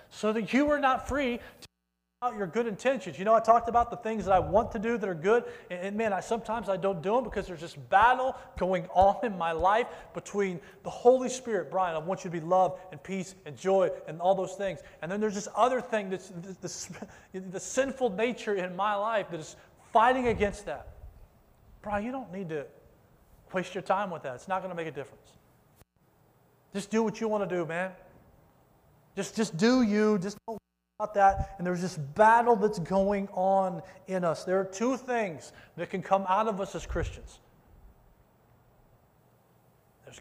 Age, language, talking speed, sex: 30-49, English, 205 wpm, male